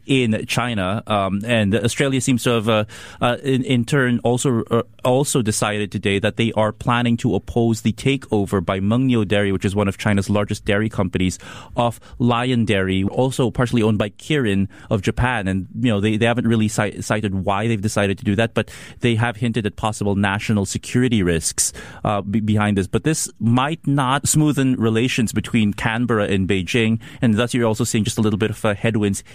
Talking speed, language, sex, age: 200 wpm, English, male, 30-49